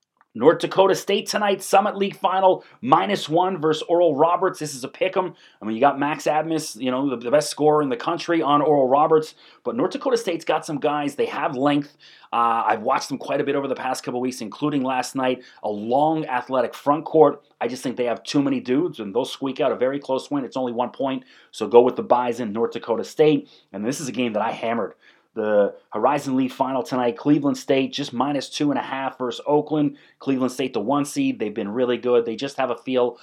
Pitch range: 120-155 Hz